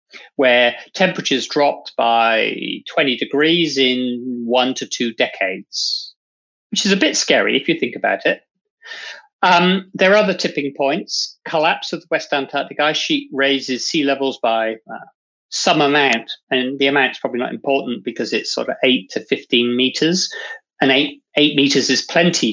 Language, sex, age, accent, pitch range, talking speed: English, male, 40-59, British, 125-165 Hz, 165 wpm